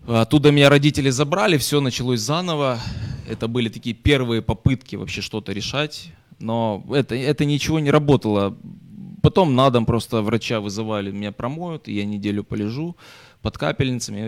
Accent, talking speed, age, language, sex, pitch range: native, 145 wpm, 20-39, Ukrainian, male, 110-135 Hz